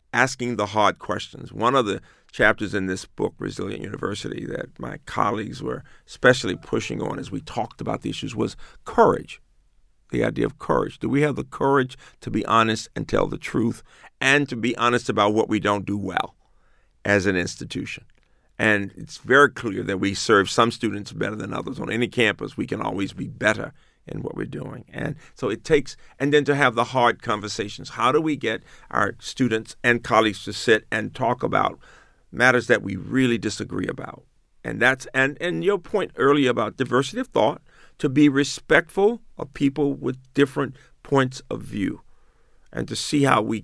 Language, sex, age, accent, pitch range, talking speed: English, male, 50-69, American, 105-140 Hz, 190 wpm